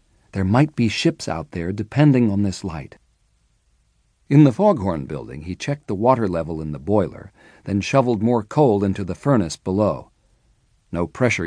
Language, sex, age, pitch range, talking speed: English, male, 50-69, 95-130 Hz, 165 wpm